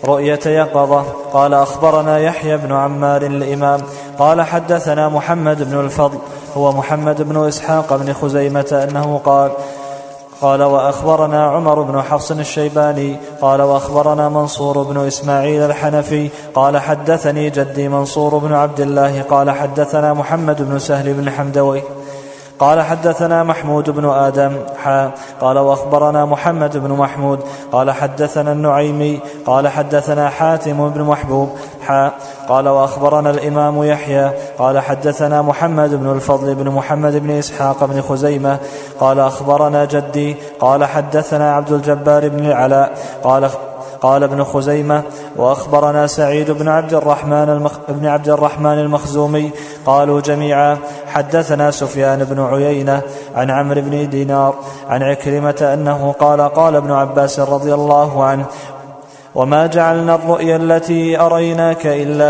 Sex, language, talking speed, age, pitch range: male, Arabic, 125 wpm, 20-39, 140-150 Hz